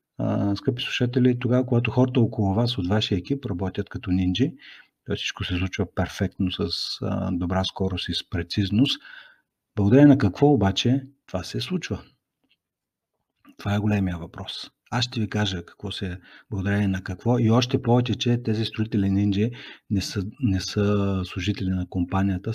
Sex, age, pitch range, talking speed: male, 50-69, 95-115 Hz, 155 wpm